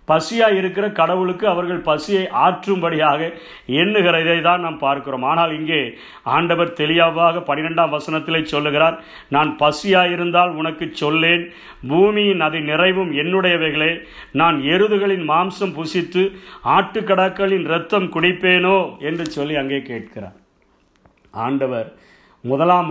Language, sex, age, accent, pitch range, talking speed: Tamil, male, 50-69, native, 160-190 Hz, 95 wpm